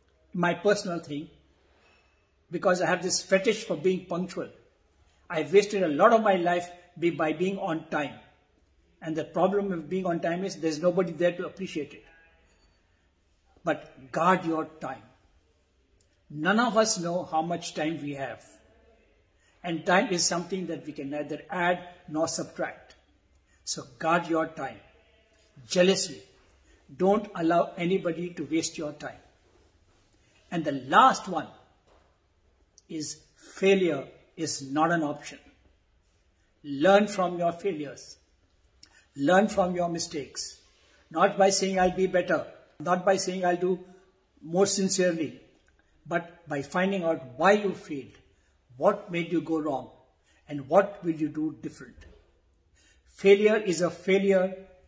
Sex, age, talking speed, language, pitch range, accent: male, 60-79, 135 wpm, English, 110-180 Hz, Indian